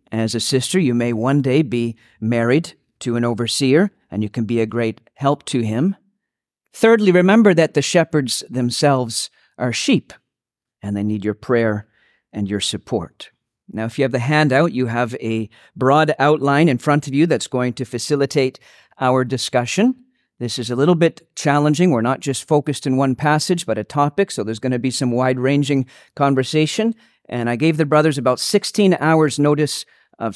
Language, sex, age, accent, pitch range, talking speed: English, male, 40-59, American, 120-165 Hz, 180 wpm